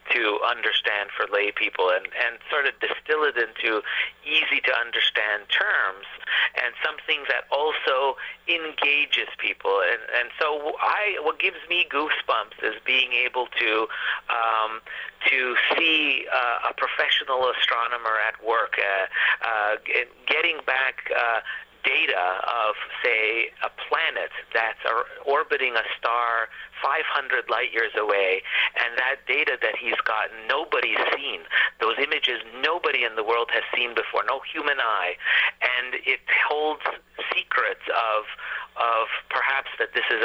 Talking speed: 135 wpm